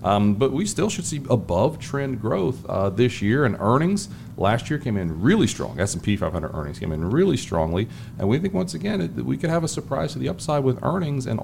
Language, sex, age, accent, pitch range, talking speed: English, male, 40-59, American, 100-140 Hz, 235 wpm